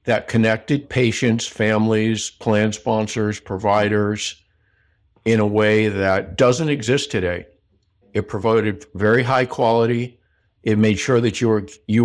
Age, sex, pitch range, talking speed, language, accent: 50-69, male, 100-115 Hz, 120 wpm, English, American